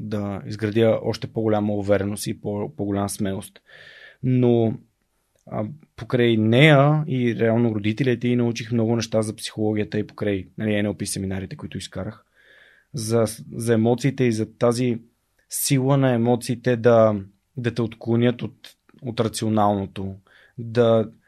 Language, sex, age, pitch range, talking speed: Bulgarian, male, 20-39, 110-140 Hz, 125 wpm